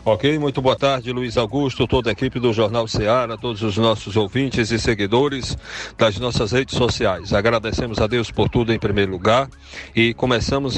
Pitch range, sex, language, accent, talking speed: 110-130 Hz, male, Portuguese, Brazilian, 180 wpm